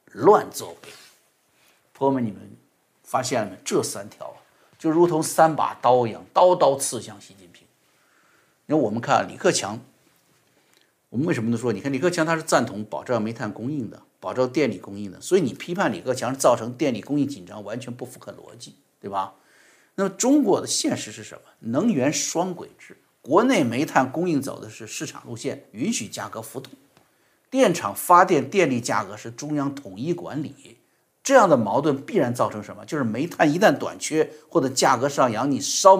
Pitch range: 120-180 Hz